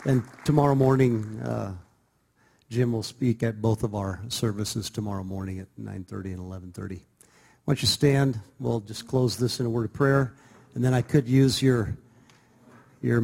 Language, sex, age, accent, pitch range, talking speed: English, male, 50-69, American, 110-130 Hz, 170 wpm